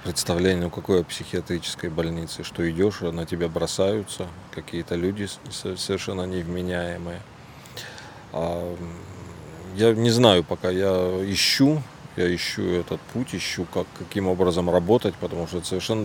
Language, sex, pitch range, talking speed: Russian, male, 85-95 Hz, 130 wpm